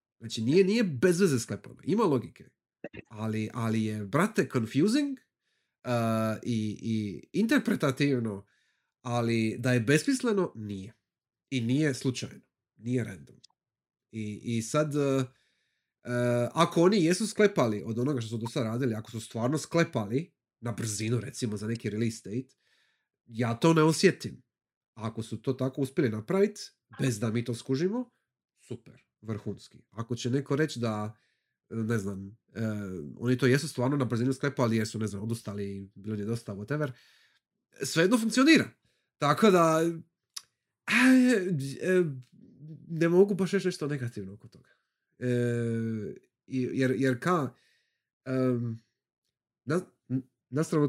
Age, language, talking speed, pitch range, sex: 30-49, Croatian, 135 wpm, 115-160 Hz, male